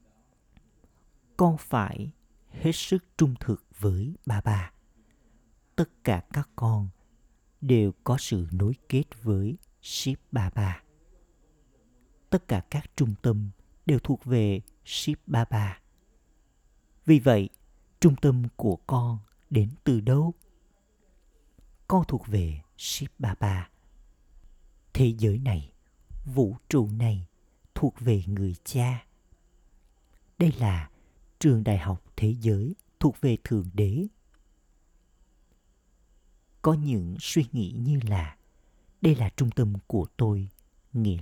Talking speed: 120 wpm